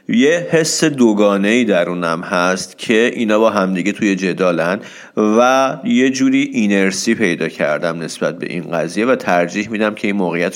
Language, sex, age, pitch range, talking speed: Persian, male, 40-59, 95-120 Hz, 155 wpm